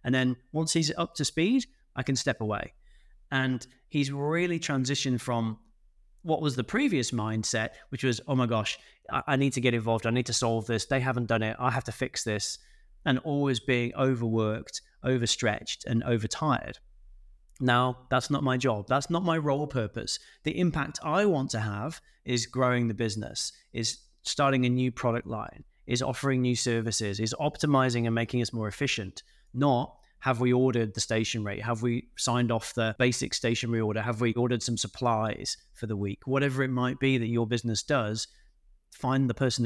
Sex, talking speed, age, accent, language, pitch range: male, 185 wpm, 30-49, British, English, 115-140 Hz